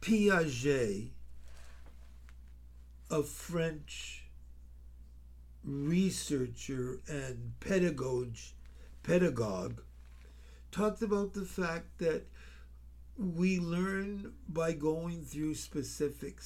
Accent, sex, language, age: American, male, English, 60-79